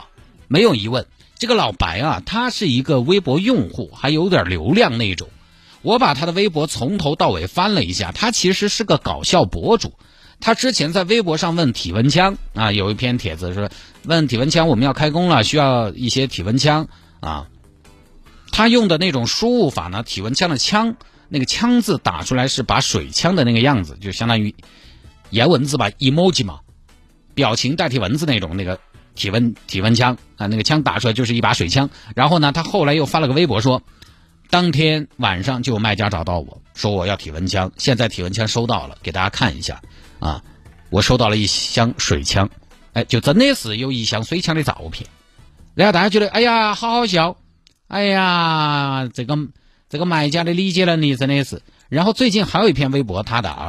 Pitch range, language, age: 100-160 Hz, Chinese, 50-69